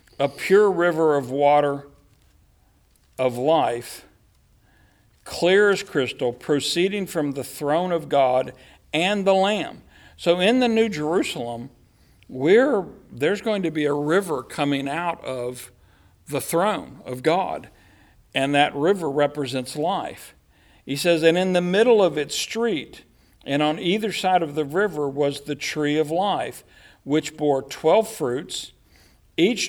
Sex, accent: male, American